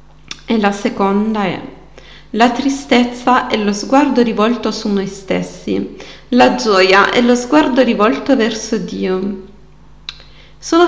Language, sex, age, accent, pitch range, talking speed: Italian, female, 40-59, native, 200-260 Hz, 120 wpm